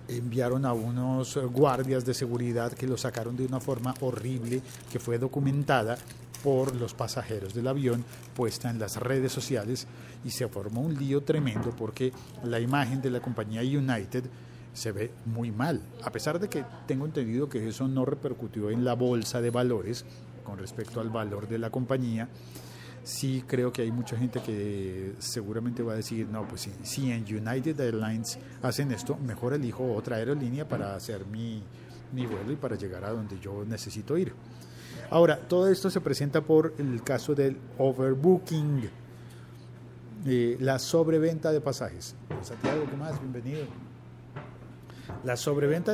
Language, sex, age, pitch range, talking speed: Spanish, male, 40-59, 115-135 Hz, 160 wpm